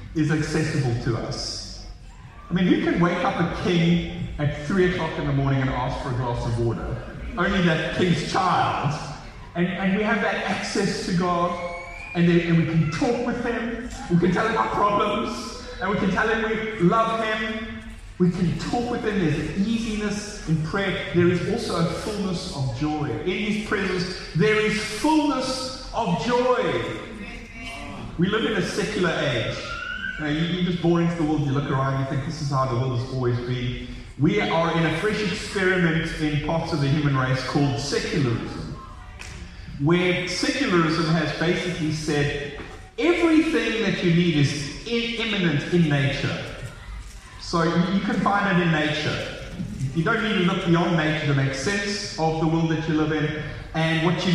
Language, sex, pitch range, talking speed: English, male, 145-195 Hz, 180 wpm